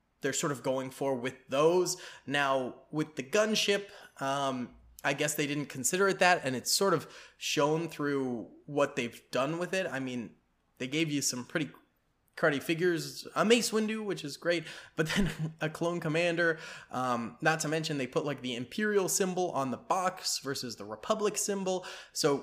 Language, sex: English, male